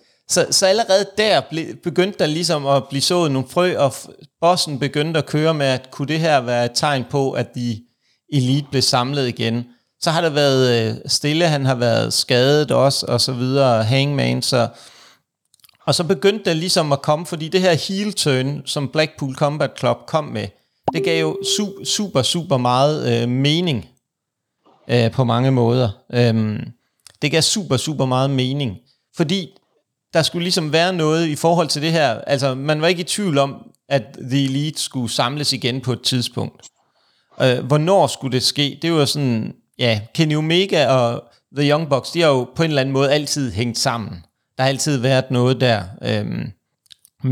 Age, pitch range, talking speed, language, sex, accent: 30-49, 125-160 Hz, 190 wpm, Danish, male, native